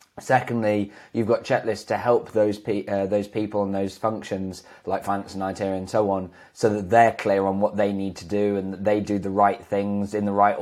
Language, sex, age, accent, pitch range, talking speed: English, male, 20-39, British, 95-115 Hz, 230 wpm